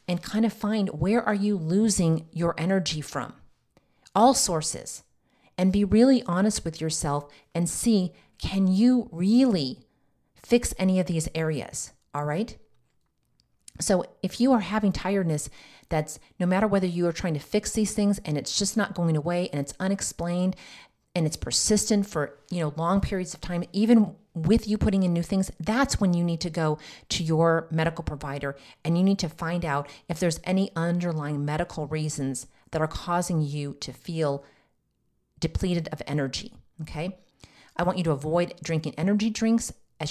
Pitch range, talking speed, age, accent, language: 155-195 Hz, 170 wpm, 40-59, American, English